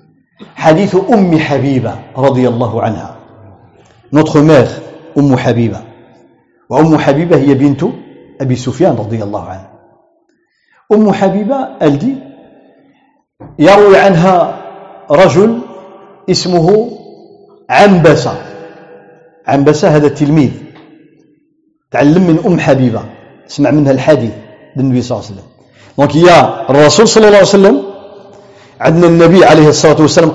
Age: 50-69